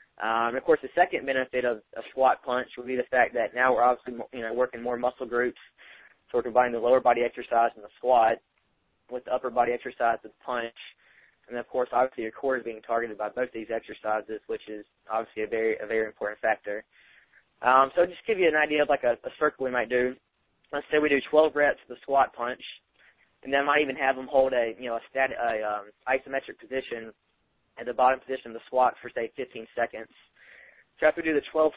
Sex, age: male, 20-39